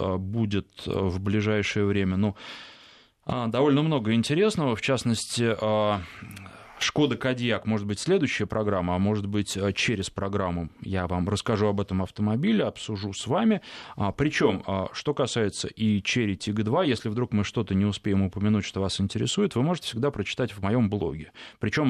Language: Russian